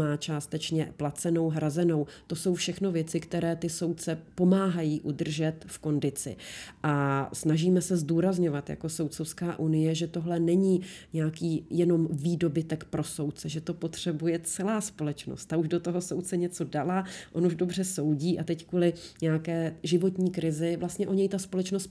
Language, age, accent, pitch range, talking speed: Czech, 30-49, native, 155-180 Hz, 155 wpm